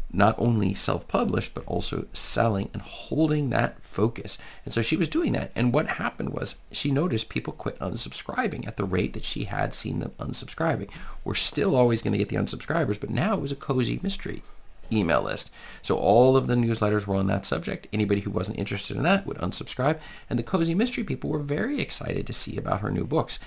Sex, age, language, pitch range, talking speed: male, 40-59, English, 100-135 Hz, 205 wpm